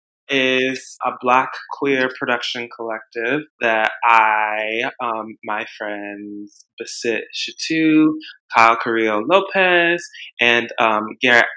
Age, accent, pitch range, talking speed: 20-39, American, 115-145 Hz, 95 wpm